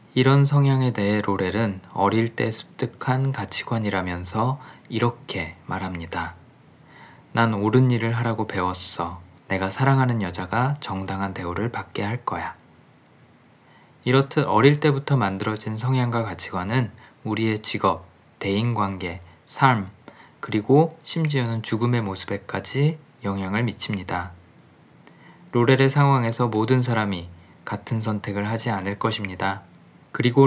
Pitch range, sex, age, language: 100-125 Hz, male, 20-39, Korean